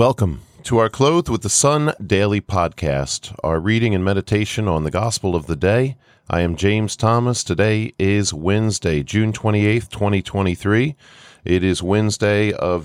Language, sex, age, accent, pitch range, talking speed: English, male, 40-59, American, 90-115 Hz, 155 wpm